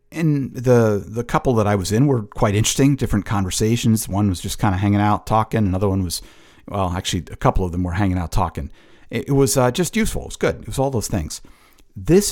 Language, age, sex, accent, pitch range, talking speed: English, 50-69, male, American, 95-115 Hz, 240 wpm